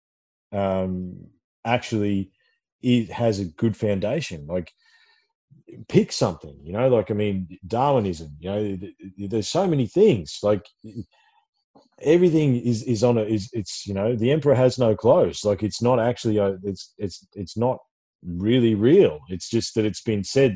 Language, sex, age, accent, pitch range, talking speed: English, male, 30-49, Australian, 100-135 Hz, 165 wpm